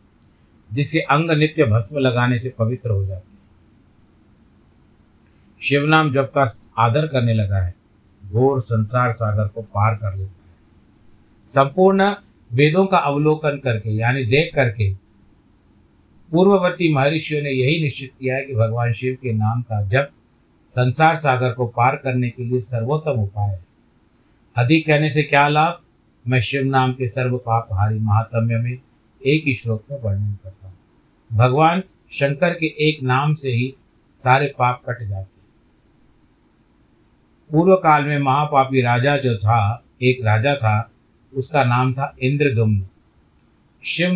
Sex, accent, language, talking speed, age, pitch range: male, native, Hindi, 135 wpm, 50-69, 110-145 Hz